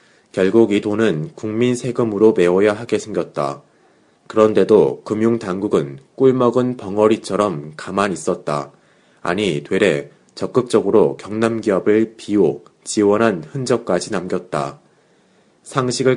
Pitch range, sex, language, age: 95-115 Hz, male, Korean, 30-49